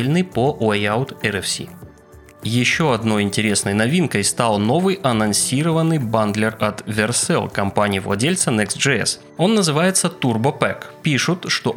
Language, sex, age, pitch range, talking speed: Russian, male, 20-39, 105-150 Hz, 100 wpm